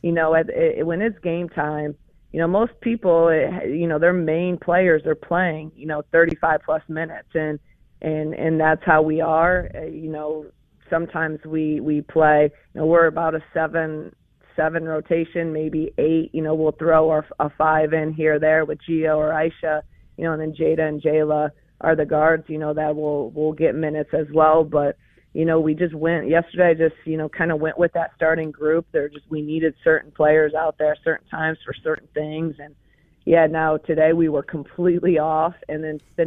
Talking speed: 205 wpm